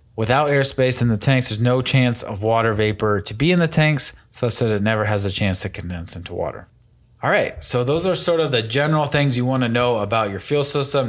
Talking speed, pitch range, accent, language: 245 wpm, 105-135 Hz, American, English